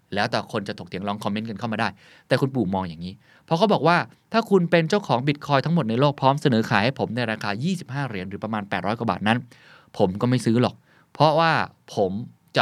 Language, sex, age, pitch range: Thai, male, 20-39, 105-145 Hz